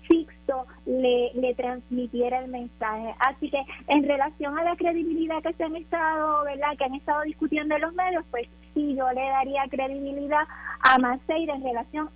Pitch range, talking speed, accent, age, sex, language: 260-305 Hz, 170 wpm, American, 20-39, female, Spanish